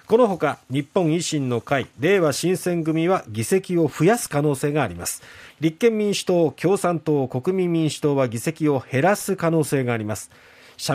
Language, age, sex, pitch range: Japanese, 40-59, male, 125-175 Hz